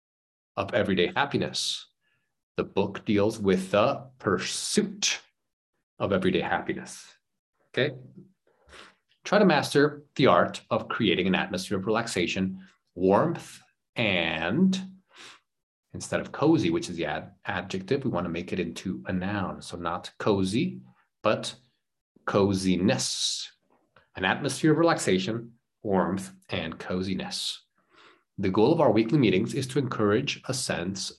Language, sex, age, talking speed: English, male, 30-49, 120 wpm